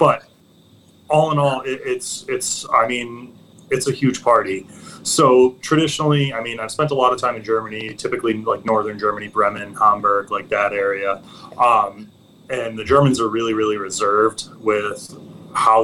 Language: English